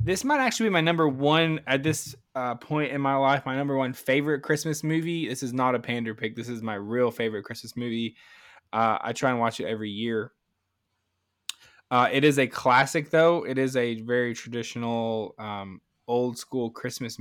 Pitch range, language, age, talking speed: 110-135 Hz, English, 20-39, 190 wpm